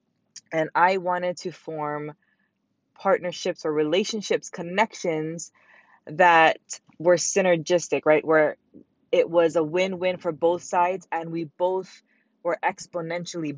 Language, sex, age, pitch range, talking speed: English, female, 20-39, 150-180 Hz, 120 wpm